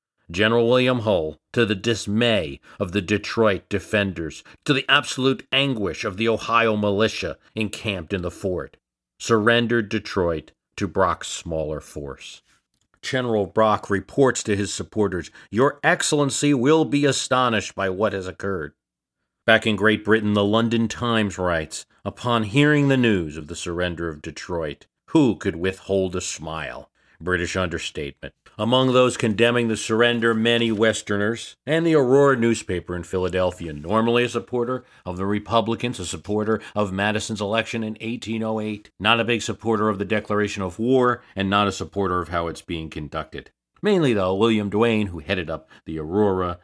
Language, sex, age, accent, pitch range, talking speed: English, male, 50-69, American, 90-115 Hz, 155 wpm